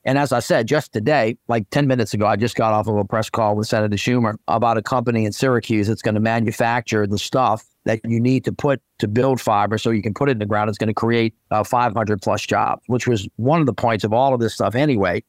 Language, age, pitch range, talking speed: English, 50-69, 110-135 Hz, 265 wpm